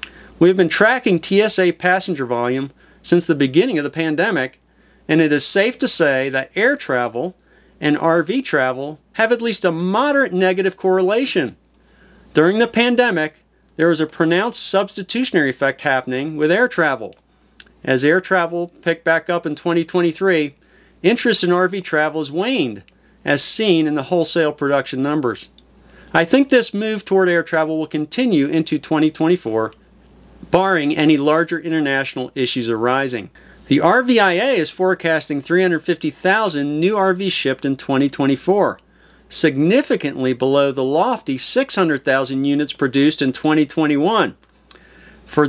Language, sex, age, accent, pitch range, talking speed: English, male, 50-69, American, 145-190 Hz, 135 wpm